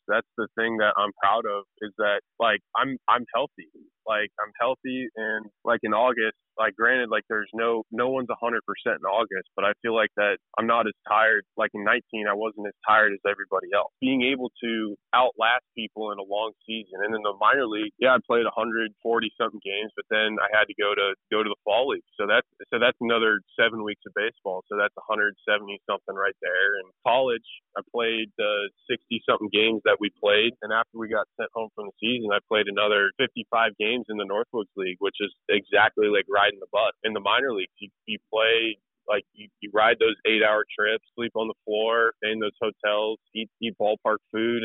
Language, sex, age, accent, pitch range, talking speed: English, male, 20-39, American, 105-115 Hz, 215 wpm